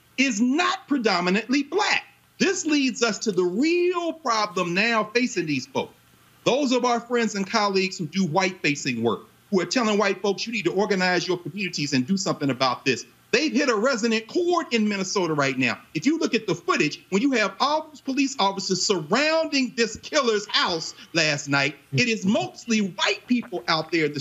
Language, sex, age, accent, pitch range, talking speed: English, male, 40-59, American, 170-250 Hz, 195 wpm